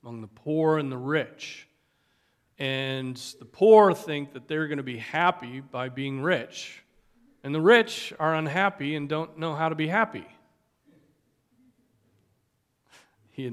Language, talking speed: English, 140 wpm